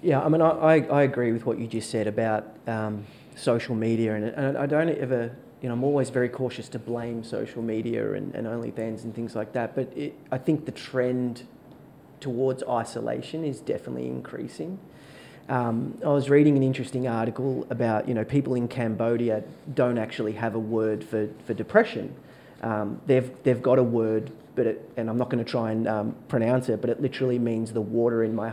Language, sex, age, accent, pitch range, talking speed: English, male, 30-49, Australian, 115-130 Hz, 200 wpm